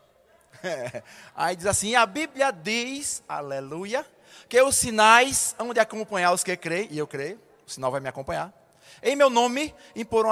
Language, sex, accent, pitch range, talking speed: Portuguese, male, Brazilian, 175-245 Hz, 165 wpm